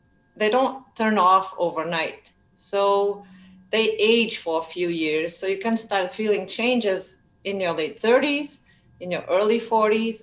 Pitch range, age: 165-220 Hz, 40-59